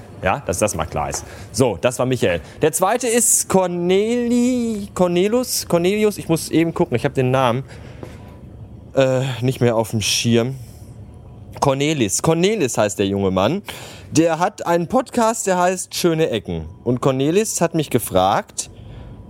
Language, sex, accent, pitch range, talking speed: German, male, German, 110-170 Hz, 150 wpm